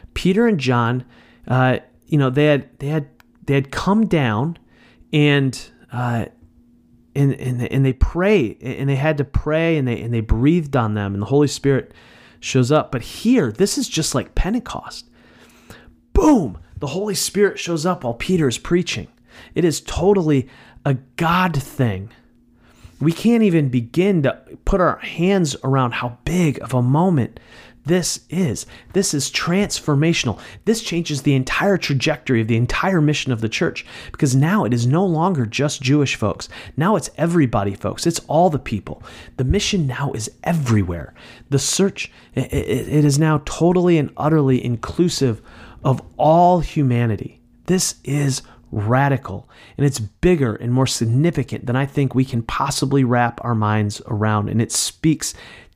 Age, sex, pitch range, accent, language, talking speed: 30-49, male, 120-160 Hz, American, English, 165 wpm